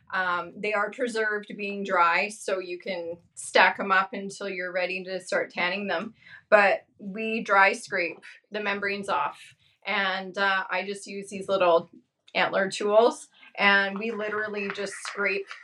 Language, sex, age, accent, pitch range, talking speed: English, female, 30-49, American, 190-220 Hz, 155 wpm